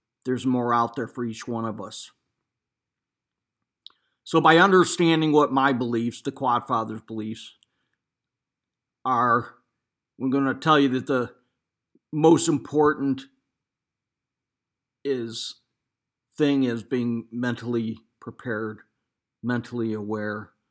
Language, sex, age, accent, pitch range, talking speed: English, male, 50-69, American, 115-140 Hz, 105 wpm